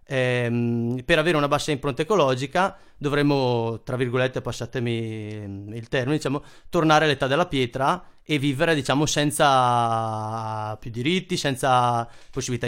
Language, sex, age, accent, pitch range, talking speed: Italian, male, 30-49, native, 120-150 Hz, 120 wpm